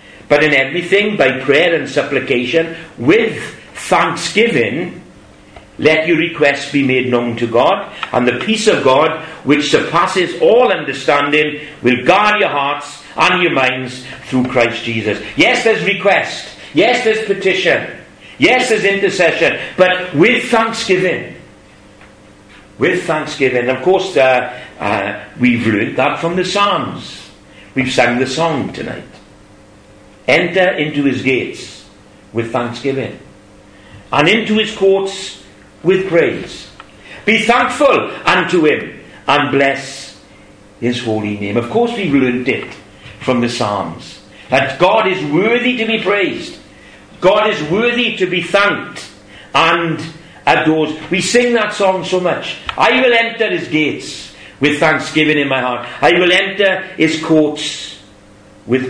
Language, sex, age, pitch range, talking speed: English, male, 60-79, 120-185 Hz, 135 wpm